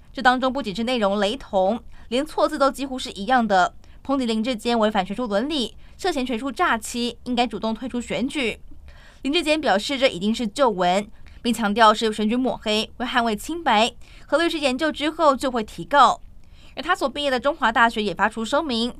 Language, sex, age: Chinese, female, 20-39